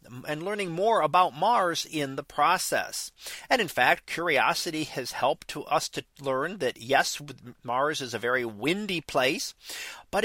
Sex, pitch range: male, 135-175 Hz